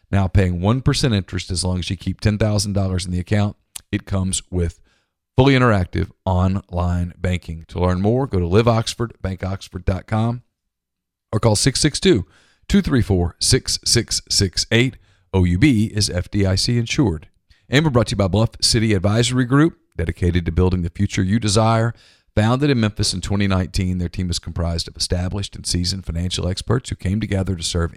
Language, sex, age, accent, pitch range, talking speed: English, male, 40-59, American, 90-110 Hz, 150 wpm